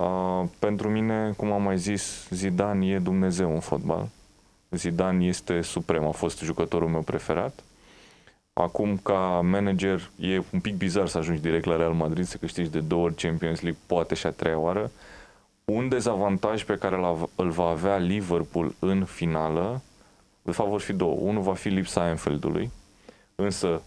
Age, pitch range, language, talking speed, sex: 20-39, 85-100 Hz, Romanian, 165 wpm, male